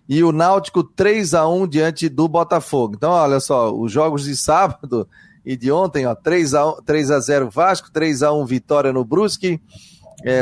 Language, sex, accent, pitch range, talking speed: Portuguese, male, Brazilian, 135-170 Hz, 145 wpm